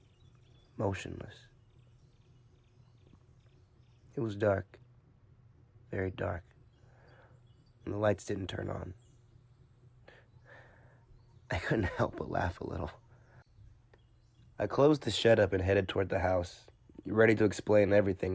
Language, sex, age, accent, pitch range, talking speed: English, male, 20-39, American, 95-120 Hz, 110 wpm